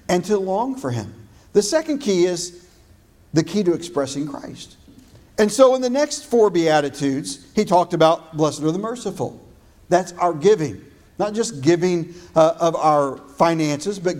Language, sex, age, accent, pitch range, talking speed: English, male, 50-69, American, 150-185 Hz, 165 wpm